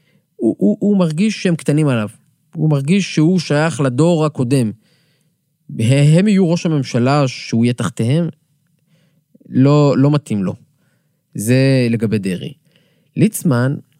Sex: male